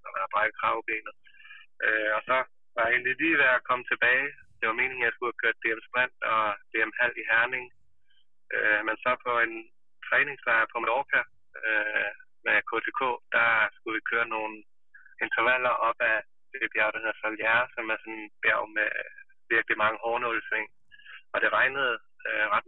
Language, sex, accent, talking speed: Danish, male, native, 170 wpm